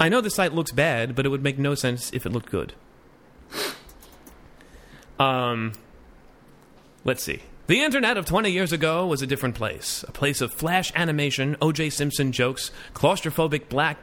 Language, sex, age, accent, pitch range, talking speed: English, male, 30-49, American, 120-165 Hz, 165 wpm